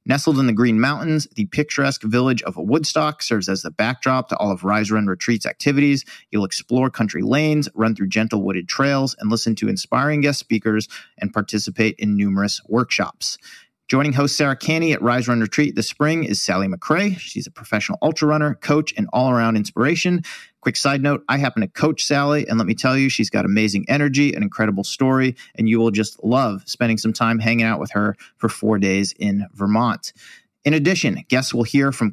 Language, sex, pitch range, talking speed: English, male, 110-145 Hz, 200 wpm